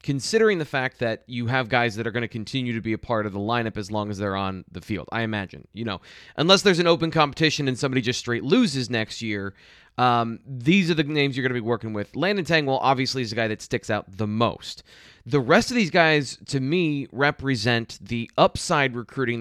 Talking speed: 230 wpm